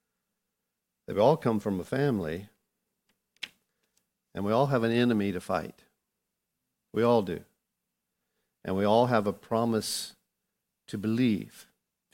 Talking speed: 130 wpm